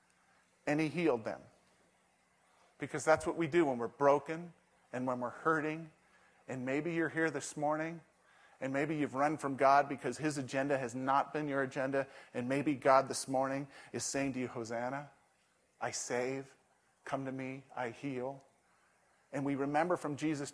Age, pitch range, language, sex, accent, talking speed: 40-59, 145-190 Hz, English, male, American, 170 wpm